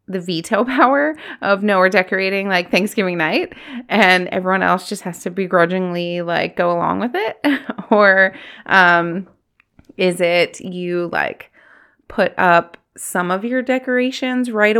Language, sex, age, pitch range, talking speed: English, female, 20-39, 180-225 Hz, 140 wpm